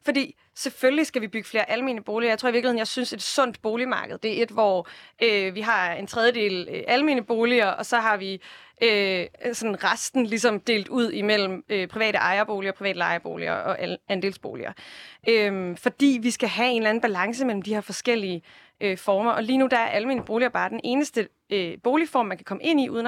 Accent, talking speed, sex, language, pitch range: native, 210 wpm, female, Danish, 200-245 Hz